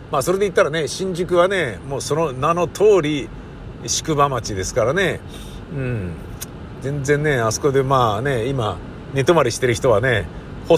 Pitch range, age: 115-160 Hz, 50-69